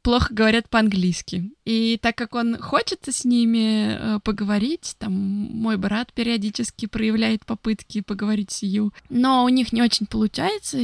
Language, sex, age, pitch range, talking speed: Russian, female, 20-39, 205-240 Hz, 150 wpm